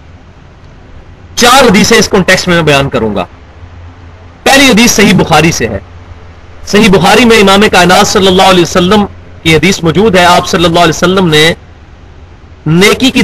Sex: male